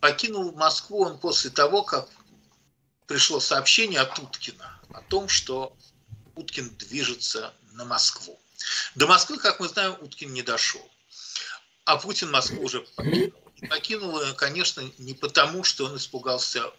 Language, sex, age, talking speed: Russian, male, 50-69, 135 wpm